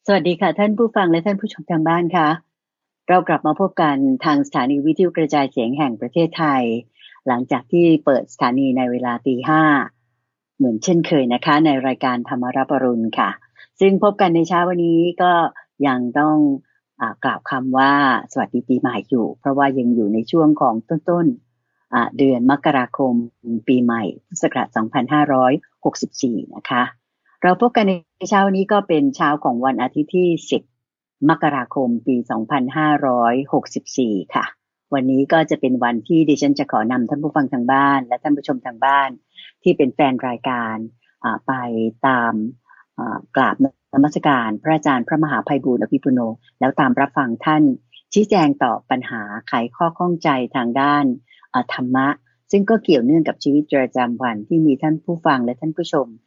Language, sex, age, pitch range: English, female, 60-79, 125-170 Hz